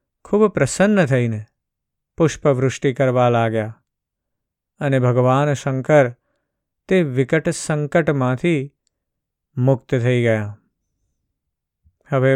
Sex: male